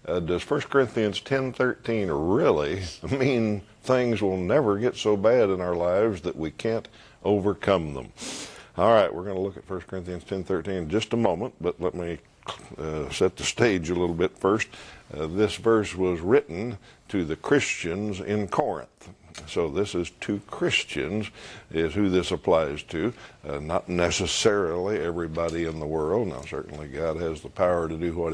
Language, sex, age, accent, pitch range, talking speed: English, male, 60-79, American, 85-110 Hz, 175 wpm